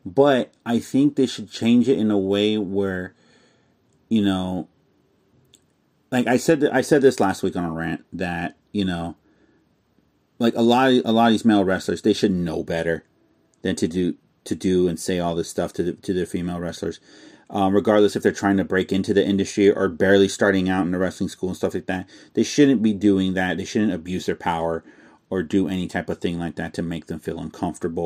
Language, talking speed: English, 215 wpm